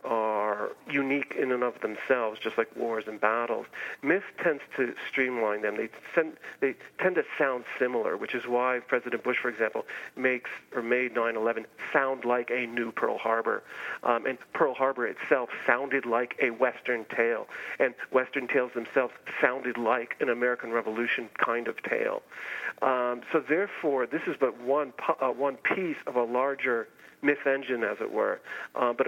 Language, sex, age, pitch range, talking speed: English, male, 40-59, 120-140 Hz, 165 wpm